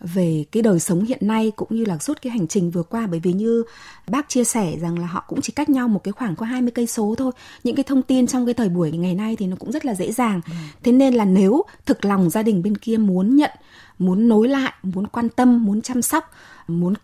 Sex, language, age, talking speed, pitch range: female, Vietnamese, 20-39, 260 wpm, 185-245 Hz